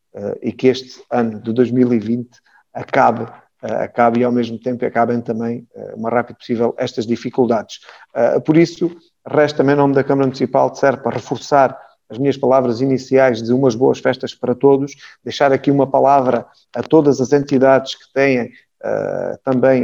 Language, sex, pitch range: Portuguese, male, 125-140 Hz